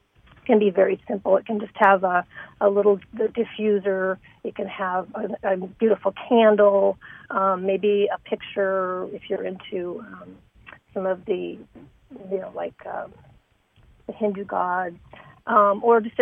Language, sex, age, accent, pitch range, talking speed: English, female, 40-59, American, 190-225 Hz, 150 wpm